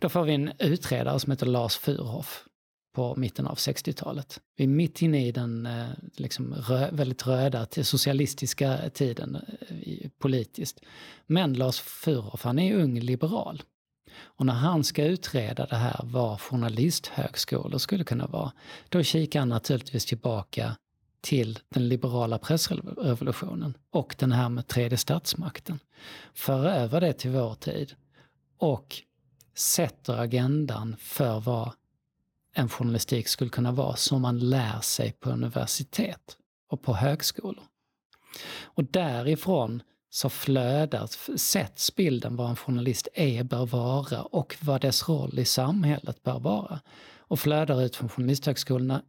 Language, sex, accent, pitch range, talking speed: Swedish, male, native, 125-150 Hz, 135 wpm